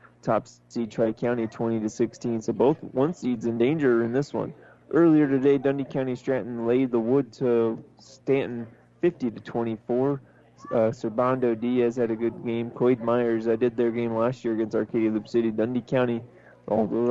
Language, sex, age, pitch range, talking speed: English, male, 20-39, 115-135 Hz, 180 wpm